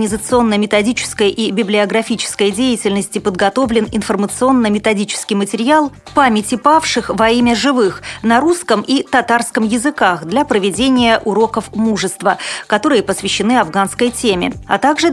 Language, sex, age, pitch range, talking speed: Russian, female, 30-49, 200-260 Hz, 110 wpm